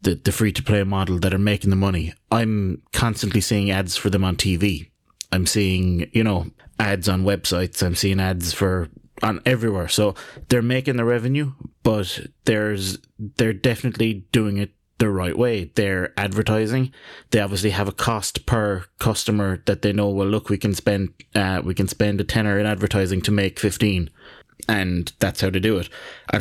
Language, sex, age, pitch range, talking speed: English, male, 20-39, 95-110 Hz, 185 wpm